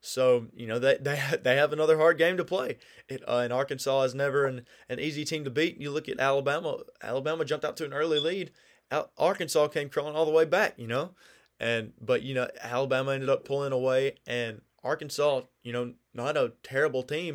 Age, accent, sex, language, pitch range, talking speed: 20-39, American, male, English, 130-160 Hz, 210 wpm